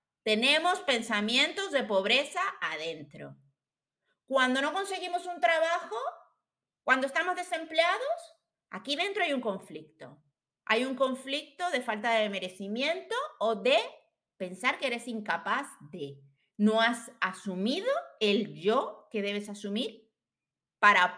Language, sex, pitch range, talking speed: Spanish, female, 195-285 Hz, 115 wpm